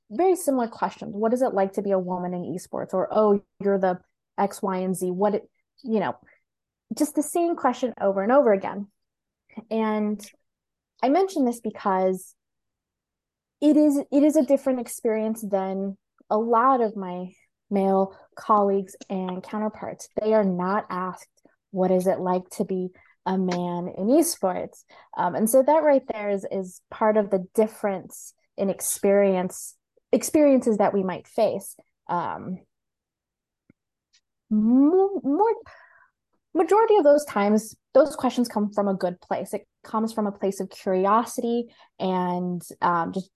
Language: English